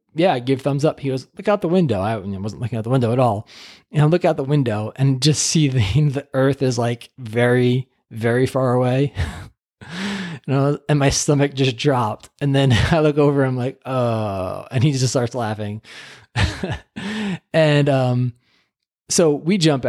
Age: 20-39